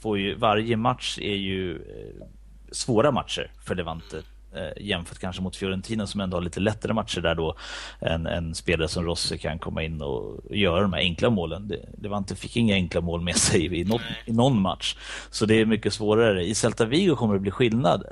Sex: male